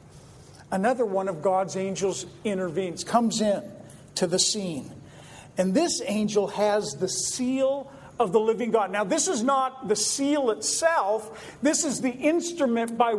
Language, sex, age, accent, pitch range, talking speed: English, male, 50-69, American, 180-240 Hz, 150 wpm